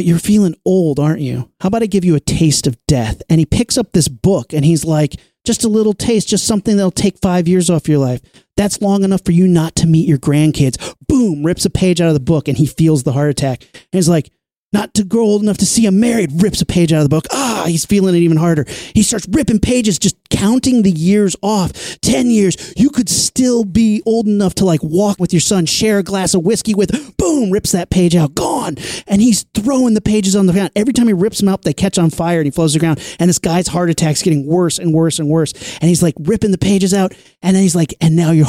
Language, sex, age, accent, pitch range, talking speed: English, male, 30-49, American, 150-200 Hz, 265 wpm